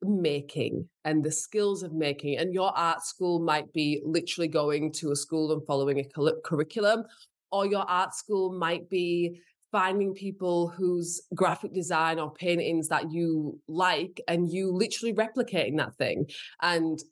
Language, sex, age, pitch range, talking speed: English, female, 20-39, 165-205 Hz, 155 wpm